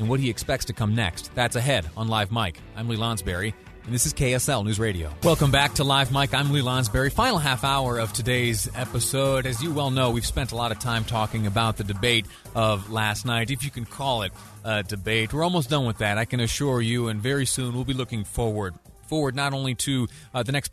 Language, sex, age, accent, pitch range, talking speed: English, male, 30-49, American, 105-130 Hz, 235 wpm